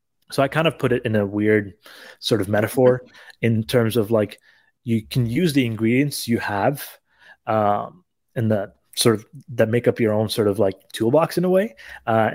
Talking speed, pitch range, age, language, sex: 200 wpm, 105-125 Hz, 30-49, English, male